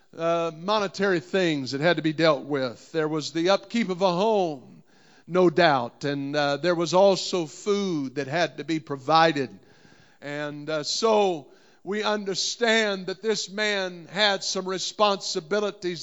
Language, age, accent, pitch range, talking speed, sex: English, 50-69, American, 175-205 Hz, 150 wpm, male